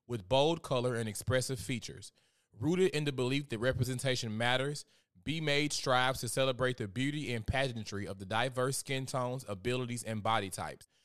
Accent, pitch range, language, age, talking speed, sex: American, 105-130 Hz, English, 20-39, 170 wpm, male